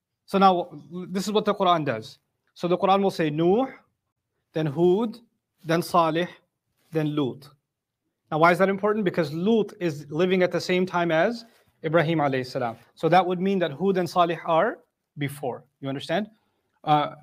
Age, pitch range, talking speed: 30-49, 160-205 Hz, 175 wpm